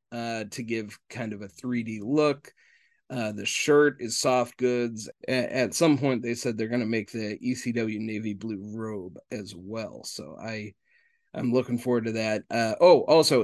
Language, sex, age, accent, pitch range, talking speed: English, male, 30-49, American, 110-135 Hz, 180 wpm